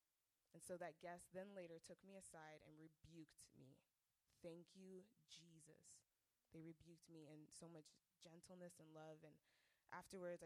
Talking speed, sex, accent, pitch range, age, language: 150 wpm, female, American, 160-180 Hz, 20-39, English